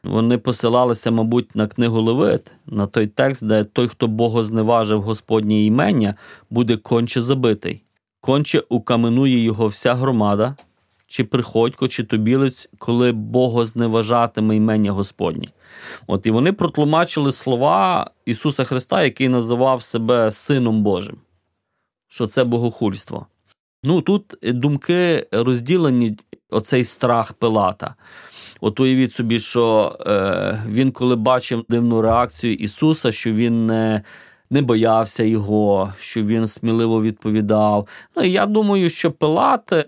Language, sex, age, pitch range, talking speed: Ukrainian, male, 20-39, 110-130 Hz, 120 wpm